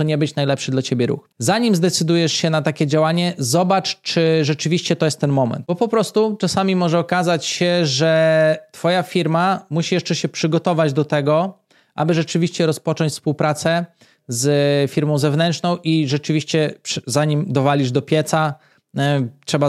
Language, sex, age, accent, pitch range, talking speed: Polish, male, 20-39, native, 145-175 Hz, 150 wpm